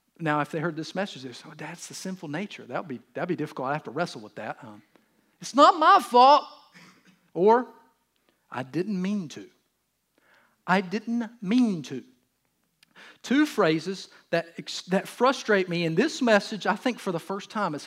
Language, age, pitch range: English, 40-59, 155-210 Hz